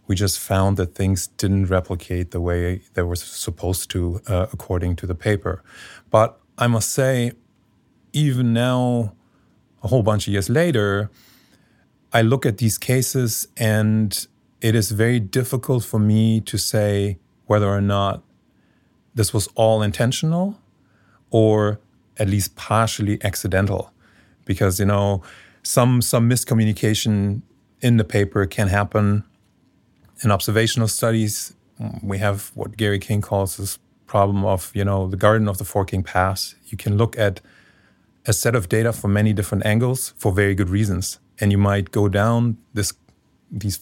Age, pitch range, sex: 30-49, 100-115 Hz, male